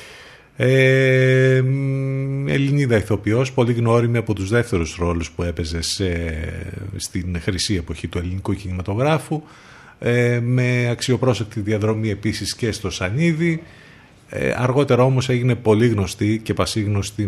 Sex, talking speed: male, 120 wpm